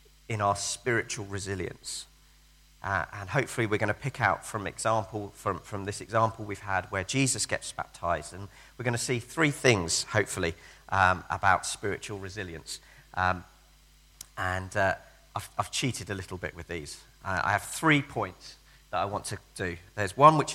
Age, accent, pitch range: 40-59, British, 90-125 Hz